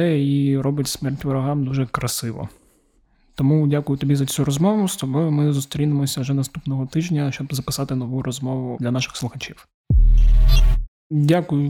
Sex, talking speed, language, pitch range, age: male, 140 wpm, Ukrainian, 135-150 Hz, 20-39